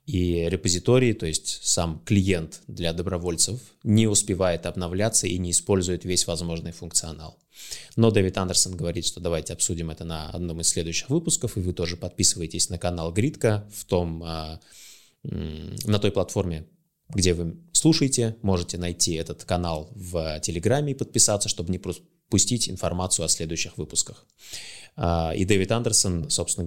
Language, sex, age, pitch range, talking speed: Russian, male, 20-39, 85-105 Hz, 145 wpm